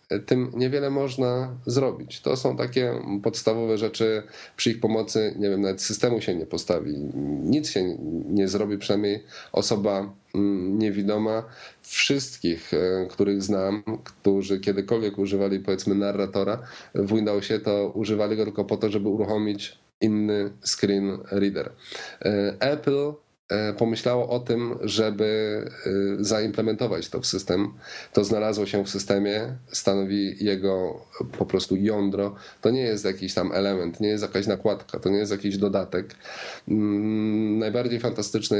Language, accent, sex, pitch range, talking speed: Polish, native, male, 95-110 Hz, 130 wpm